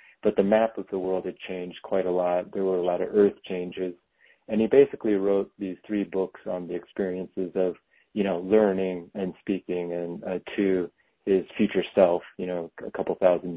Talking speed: 200 wpm